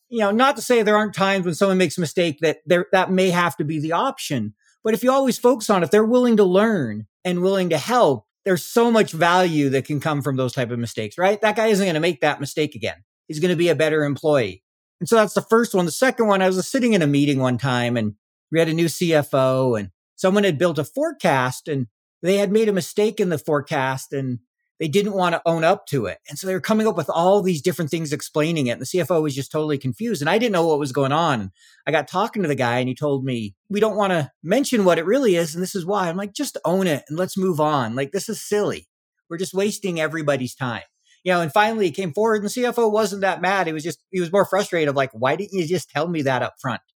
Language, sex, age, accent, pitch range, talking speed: English, male, 50-69, American, 140-200 Hz, 270 wpm